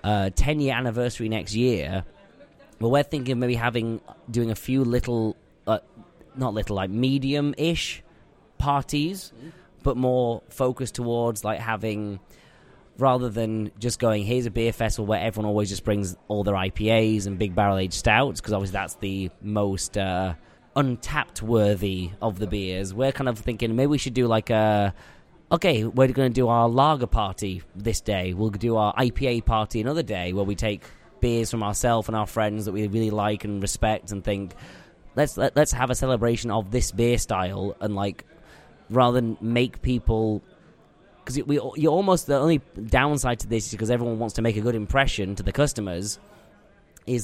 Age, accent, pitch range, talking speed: 20-39, British, 105-125 Hz, 180 wpm